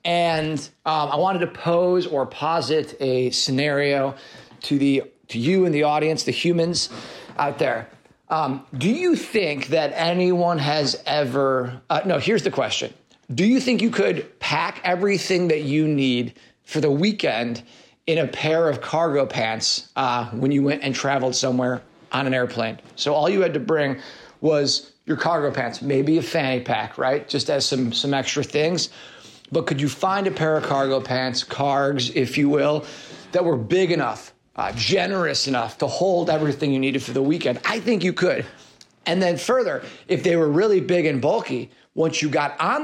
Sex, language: male, English